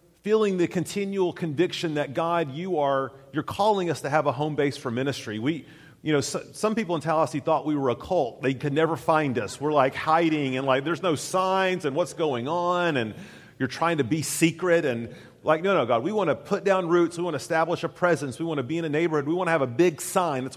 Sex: male